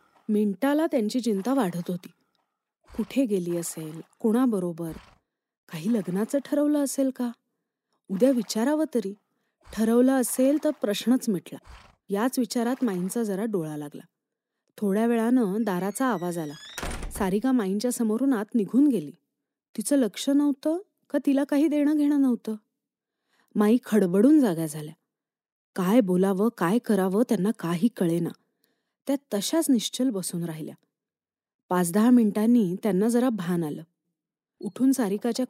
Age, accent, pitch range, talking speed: 30-49, native, 200-275 Hz, 120 wpm